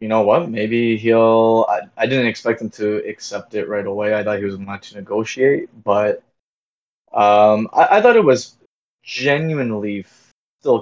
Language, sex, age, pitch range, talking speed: English, male, 20-39, 105-120 Hz, 170 wpm